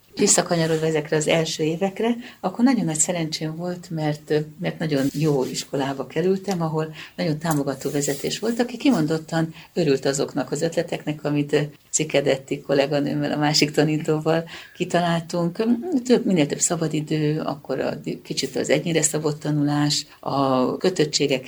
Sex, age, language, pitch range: female, 60-79, Hungarian, 145-210 Hz